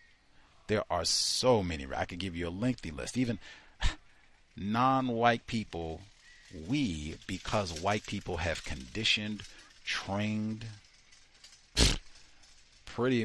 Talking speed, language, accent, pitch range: 100 wpm, English, American, 85-115 Hz